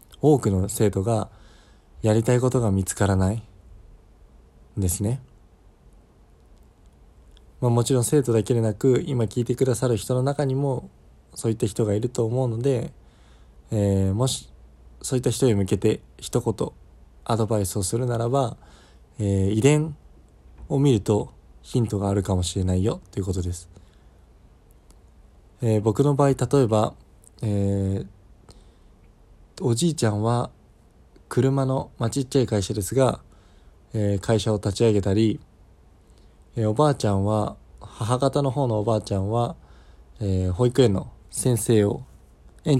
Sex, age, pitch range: male, 20-39, 90-120 Hz